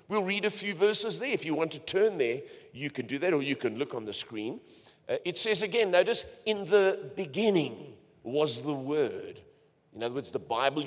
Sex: male